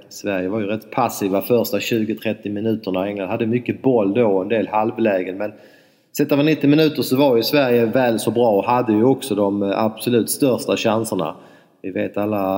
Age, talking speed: 30-49, 190 wpm